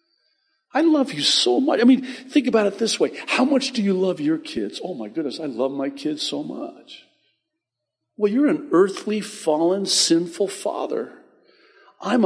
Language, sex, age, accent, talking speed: English, male, 50-69, American, 175 wpm